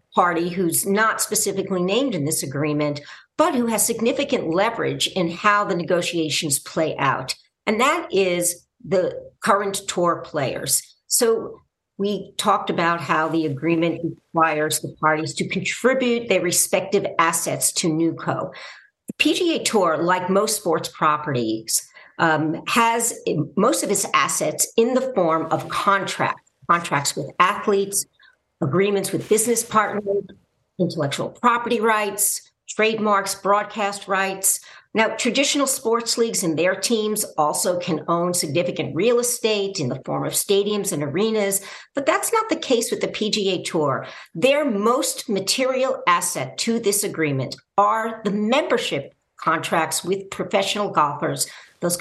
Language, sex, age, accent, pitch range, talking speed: English, female, 50-69, American, 165-225 Hz, 135 wpm